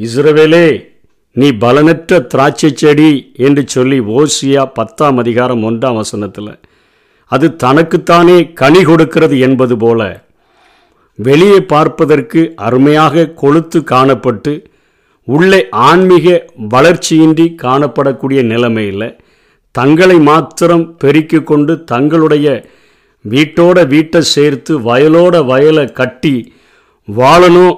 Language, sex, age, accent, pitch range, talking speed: Tamil, male, 50-69, native, 130-160 Hz, 80 wpm